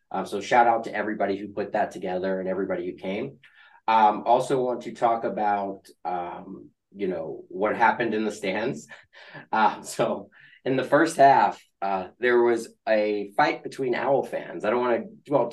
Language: English